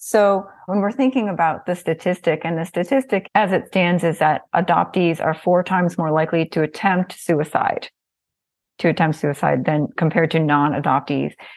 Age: 30-49